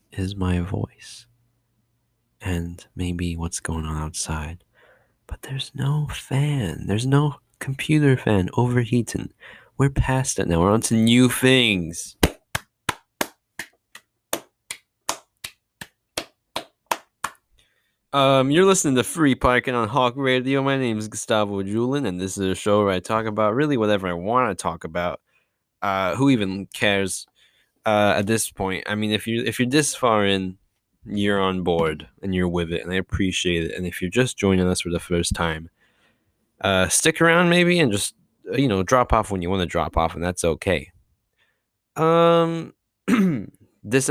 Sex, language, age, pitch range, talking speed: male, English, 20-39, 90-125 Hz, 160 wpm